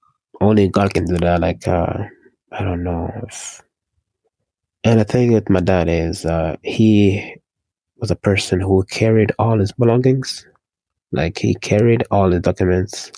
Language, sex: English, male